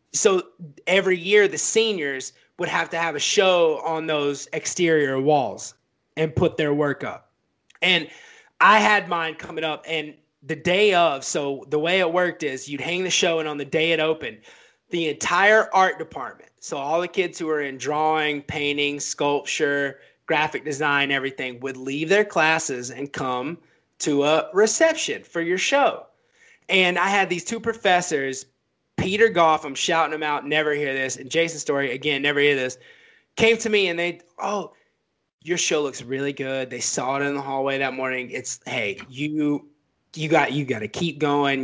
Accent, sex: American, male